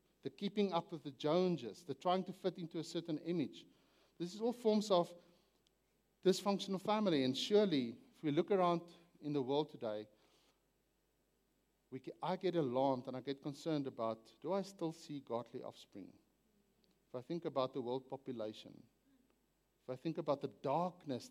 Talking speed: 165 wpm